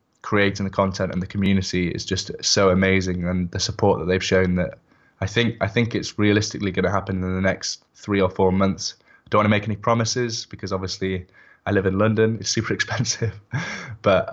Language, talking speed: English, 205 wpm